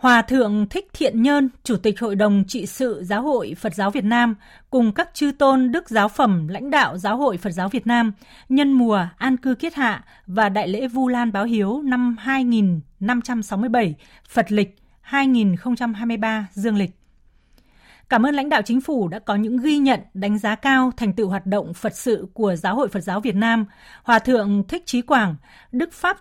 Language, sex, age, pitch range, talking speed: Vietnamese, female, 30-49, 205-265 Hz, 195 wpm